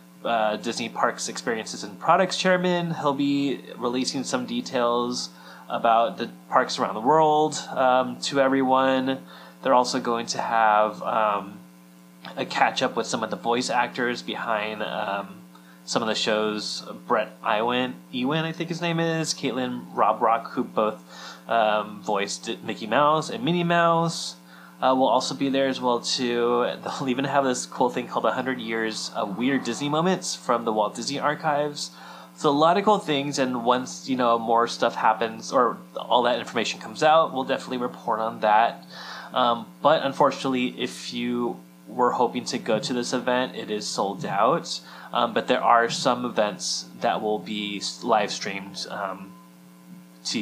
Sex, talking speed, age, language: male, 165 wpm, 20-39, English